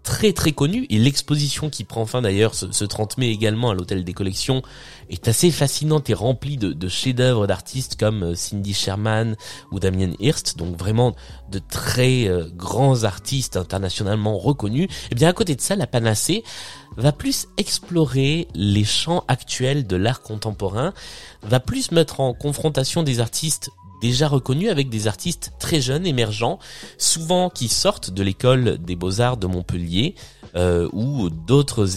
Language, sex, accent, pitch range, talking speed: French, male, French, 100-135 Hz, 160 wpm